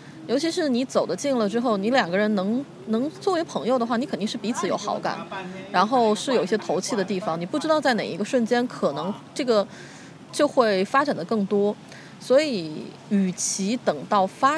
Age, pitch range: 20-39, 185-250 Hz